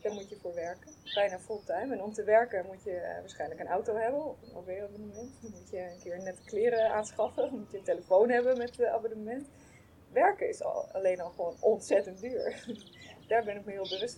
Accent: Dutch